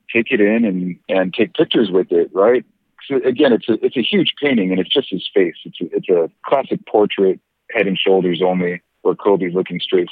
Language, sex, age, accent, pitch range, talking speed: English, male, 50-69, American, 90-115 Hz, 220 wpm